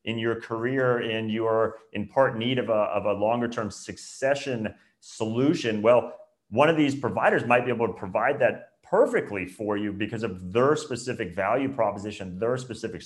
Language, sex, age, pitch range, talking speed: English, male, 30-49, 95-135 Hz, 175 wpm